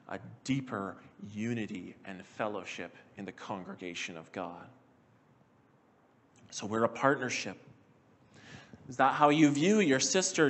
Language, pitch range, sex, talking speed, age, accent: English, 130-180 Hz, male, 120 wpm, 40-59, American